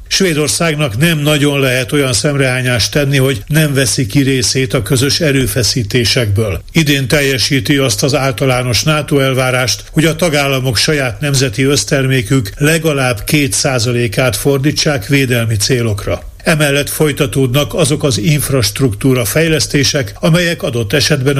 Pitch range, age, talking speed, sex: 125-150 Hz, 50-69, 120 wpm, male